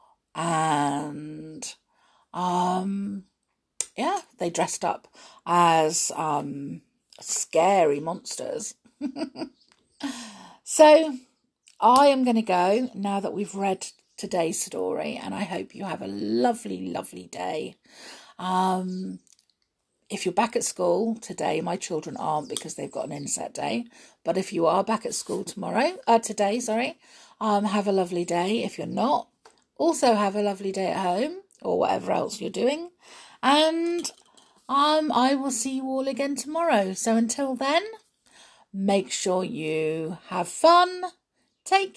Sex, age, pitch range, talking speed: female, 50-69, 180-275 Hz, 135 wpm